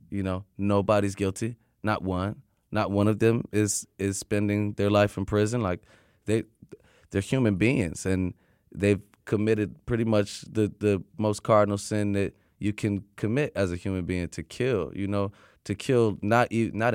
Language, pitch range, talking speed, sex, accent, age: English, 100-110 Hz, 170 wpm, male, American, 20-39